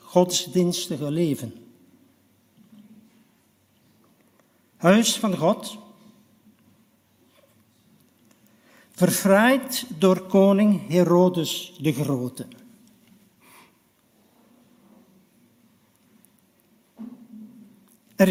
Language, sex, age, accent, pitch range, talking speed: Dutch, male, 60-79, Dutch, 165-225 Hz, 40 wpm